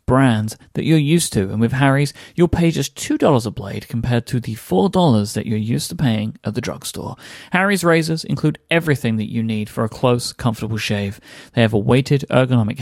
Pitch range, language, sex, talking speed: 115-145 Hz, English, male, 200 wpm